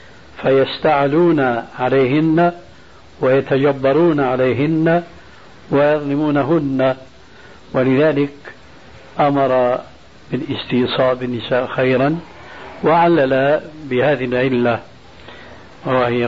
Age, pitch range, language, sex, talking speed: 60-79, 130-155 Hz, Arabic, male, 50 wpm